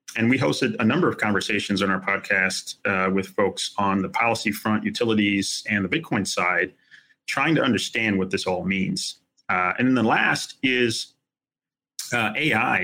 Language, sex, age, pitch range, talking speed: English, male, 30-49, 100-120 Hz, 175 wpm